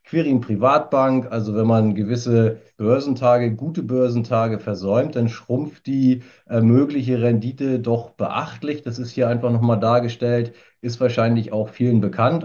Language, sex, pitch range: German, male, 110-125 Hz